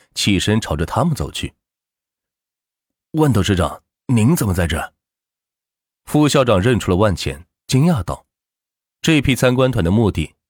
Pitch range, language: 85-125 Hz, Chinese